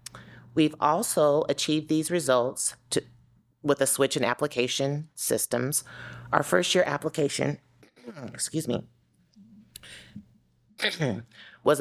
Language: English